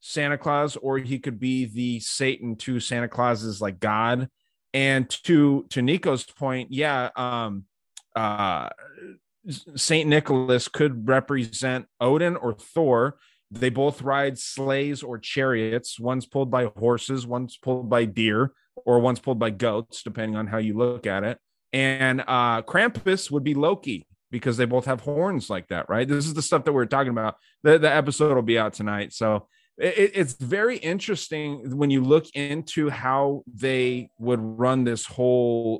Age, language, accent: 30-49, English, American